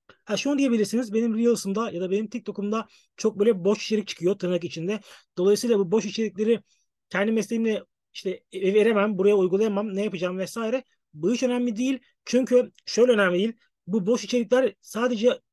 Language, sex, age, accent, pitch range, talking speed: Turkish, male, 40-59, native, 190-235 Hz, 160 wpm